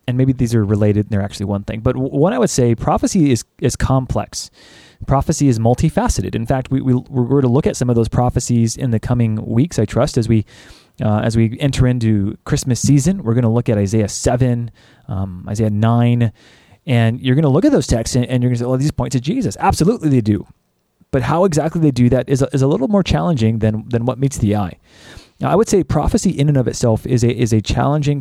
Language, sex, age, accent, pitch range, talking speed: English, male, 20-39, American, 110-140 Hz, 245 wpm